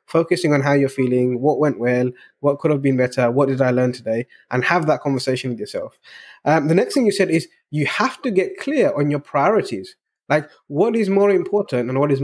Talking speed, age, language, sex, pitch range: 230 wpm, 20-39, English, male, 130-170 Hz